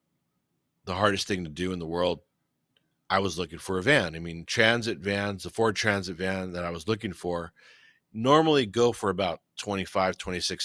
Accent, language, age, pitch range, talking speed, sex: American, English, 40-59, 90-105 Hz, 185 wpm, male